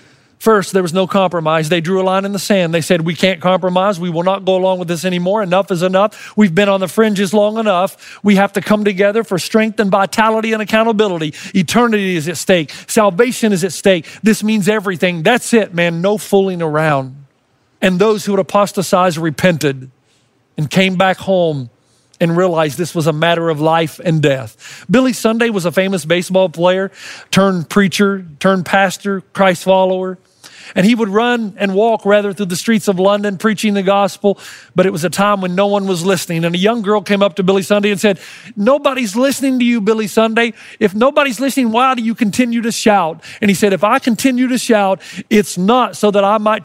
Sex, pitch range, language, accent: male, 180-215 Hz, English, American